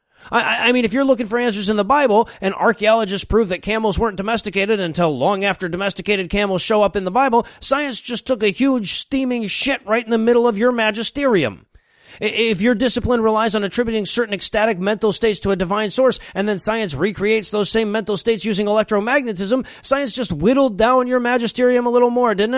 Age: 30-49